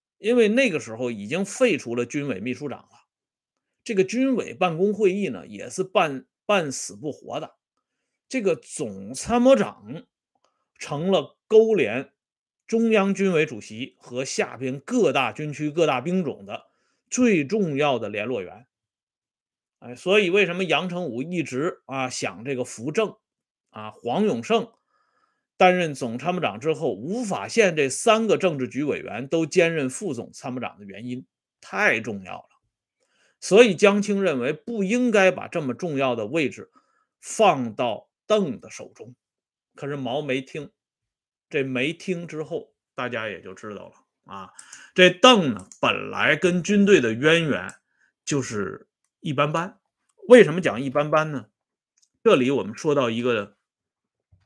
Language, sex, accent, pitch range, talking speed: Swedish, male, Chinese, 135-215 Hz, 100 wpm